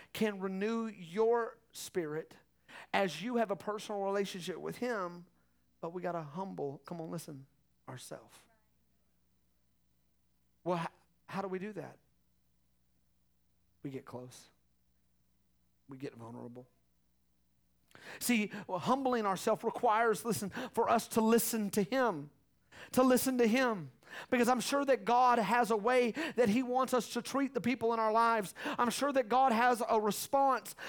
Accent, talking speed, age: American, 145 wpm, 40-59